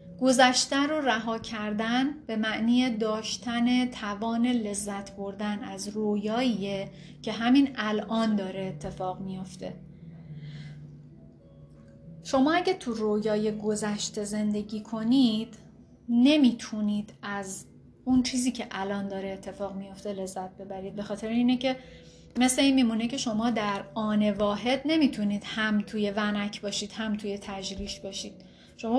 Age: 30-49